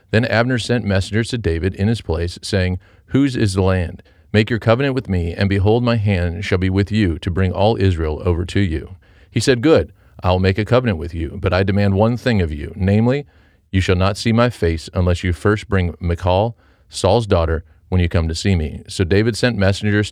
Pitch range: 90-110 Hz